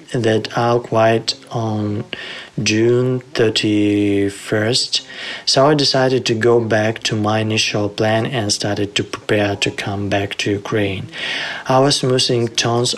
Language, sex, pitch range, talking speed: Ukrainian, male, 105-125 Hz, 135 wpm